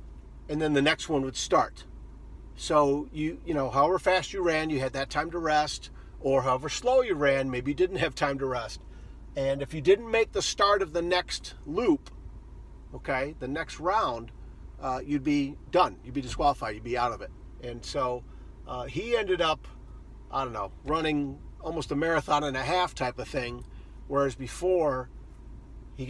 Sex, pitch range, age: male, 125-180 Hz, 50-69